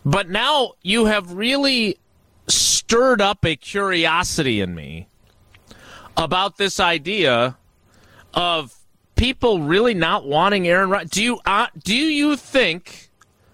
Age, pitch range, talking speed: 40-59, 130-210 Hz, 105 wpm